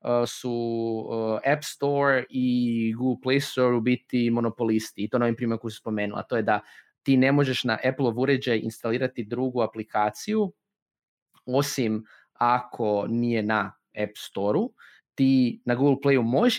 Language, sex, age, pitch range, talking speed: Croatian, male, 20-39, 120-140 Hz, 150 wpm